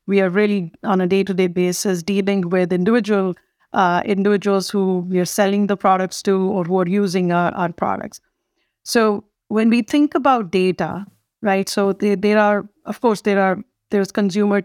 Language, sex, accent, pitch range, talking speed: English, female, Indian, 185-210 Hz, 170 wpm